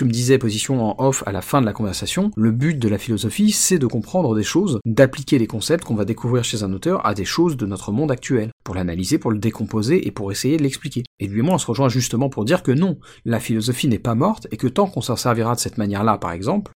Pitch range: 115-145 Hz